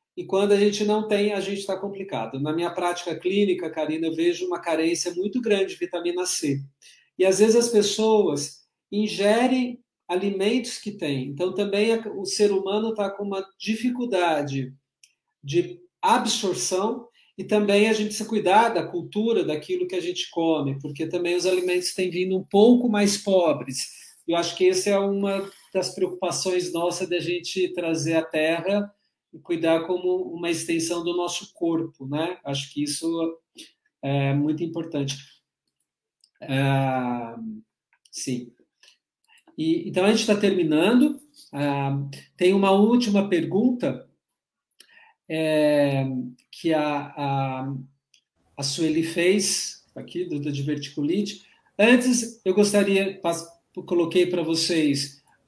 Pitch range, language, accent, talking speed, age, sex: 160-205 Hz, Portuguese, Brazilian, 135 wpm, 40-59, male